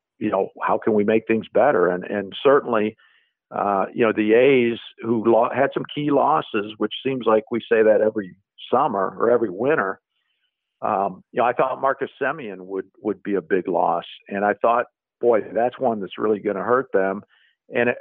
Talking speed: 195 wpm